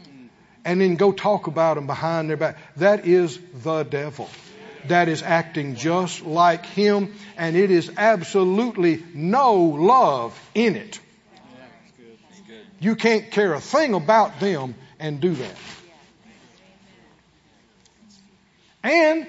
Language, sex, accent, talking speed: English, male, American, 120 wpm